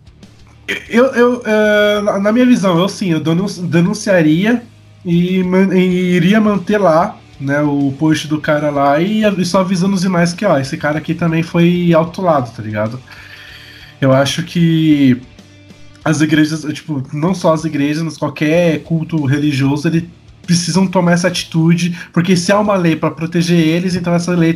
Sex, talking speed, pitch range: male, 170 wpm, 150-185 Hz